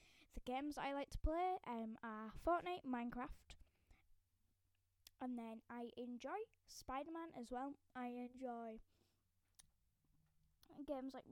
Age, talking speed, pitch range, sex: 10-29, 115 wpm, 230-280 Hz, female